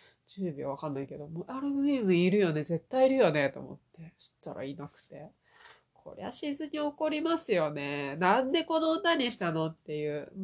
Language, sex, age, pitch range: Japanese, female, 30-49, 170-280 Hz